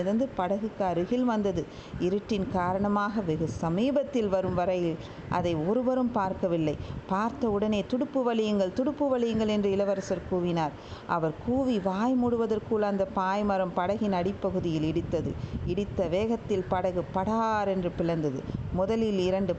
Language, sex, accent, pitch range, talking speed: Tamil, female, native, 175-225 Hz, 75 wpm